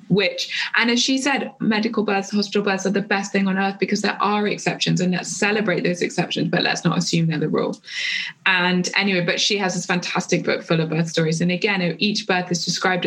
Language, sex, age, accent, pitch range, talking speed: English, female, 20-39, British, 165-195 Hz, 225 wpm